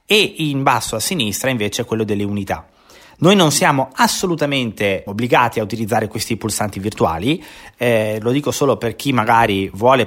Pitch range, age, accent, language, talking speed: 100-135 Hz, 30-49, native, Italian, 160 wpm